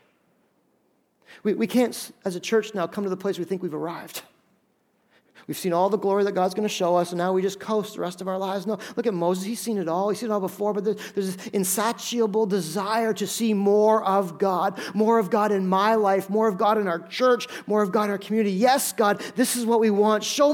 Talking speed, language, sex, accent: 245 wpm, English, male, American